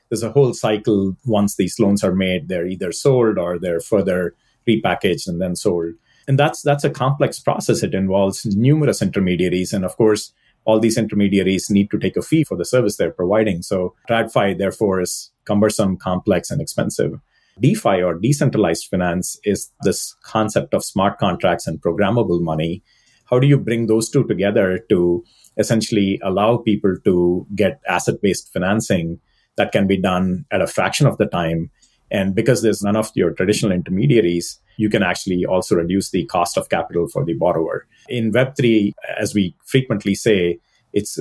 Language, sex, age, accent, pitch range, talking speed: English, male, 30-49, Indian, 90-115 Hz, 170 wpm